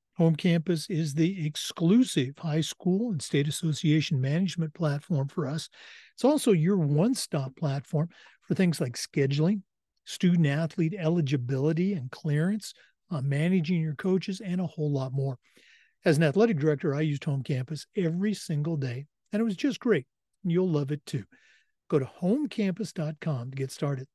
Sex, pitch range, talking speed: male, 145-185 Hz, 155 wpm